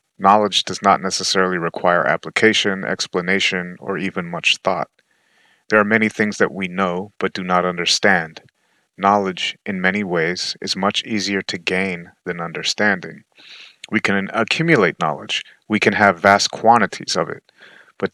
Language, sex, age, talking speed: English, male, 30-49, 150 wpm